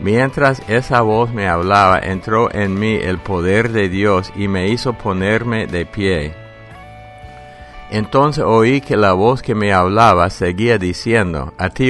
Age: 60-79